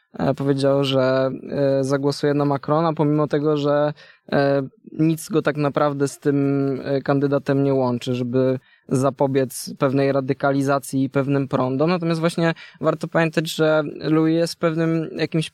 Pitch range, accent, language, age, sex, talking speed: 140-160 Hz, native, Polish, 20-39, male, 125 wpm